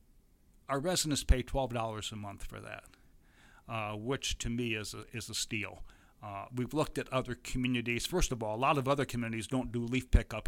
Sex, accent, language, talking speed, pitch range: male, American, English, 200 wpm, 110-125 Hz